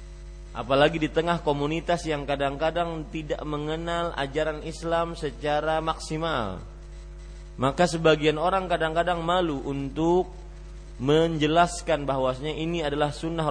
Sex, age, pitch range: male, 30-49, 140-165 Hz